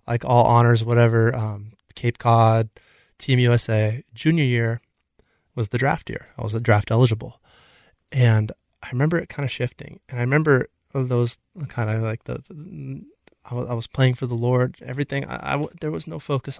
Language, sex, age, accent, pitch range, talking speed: English, male, 20-39, American, 110-130 Hz, 175 wpm